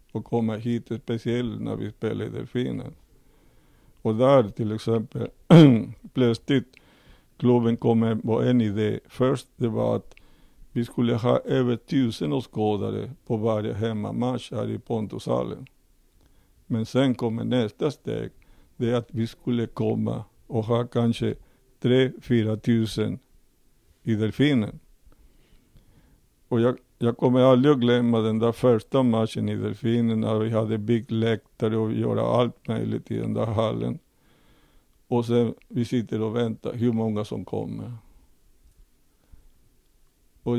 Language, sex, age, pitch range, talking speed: Swedish, male, 50-69, 110-125 Hz, 135 wpm